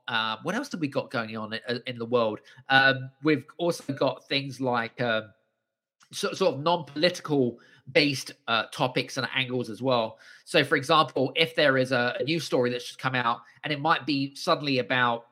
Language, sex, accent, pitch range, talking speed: English, male, British, 125-165 Hz, 190 wpm